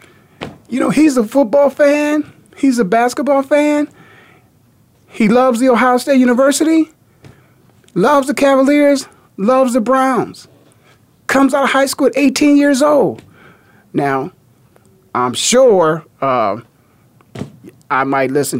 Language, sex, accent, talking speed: English, male, American, 125 wpm